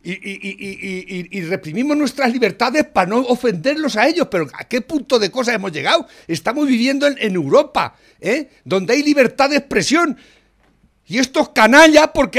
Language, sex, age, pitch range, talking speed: Spanish, male, 60-79, 195-305 Hz, 175 wpm